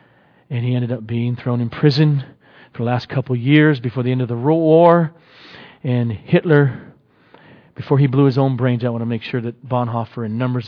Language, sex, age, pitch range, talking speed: English, male, 40-59, 110-145 Hz, 220 wpm